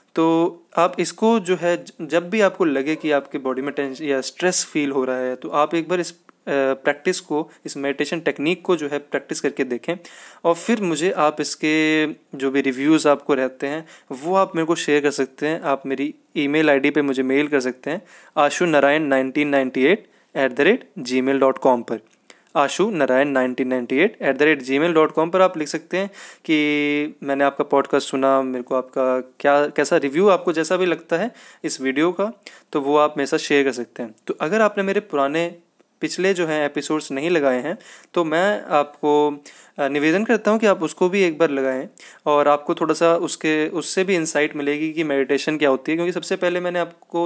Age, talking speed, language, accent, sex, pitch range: 20-39, 195 wpm, Hindi, native, male, 140-175 Hz